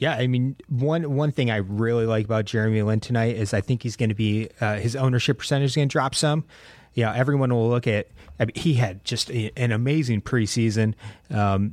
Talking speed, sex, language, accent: 225 wpm, male, English, American